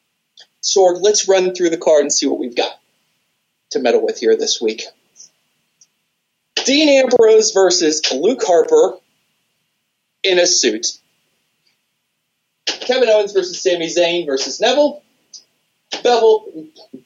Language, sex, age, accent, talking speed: English, male, 30-49, American, 115 wpm